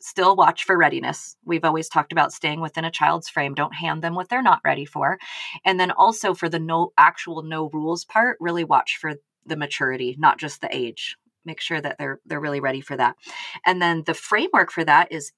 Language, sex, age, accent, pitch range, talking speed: English, female, 30-49, American, 155-205 Hz, 220 wpm